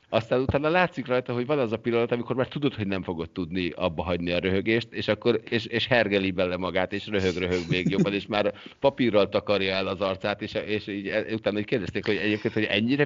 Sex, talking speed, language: male, 215 wpm, Hungarian